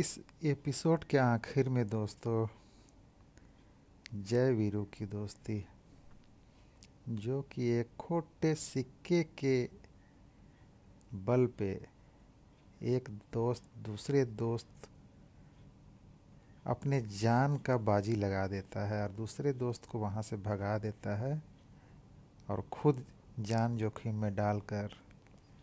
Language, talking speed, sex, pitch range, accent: Hindi, 105 wpm, male, 105-130 Hz, native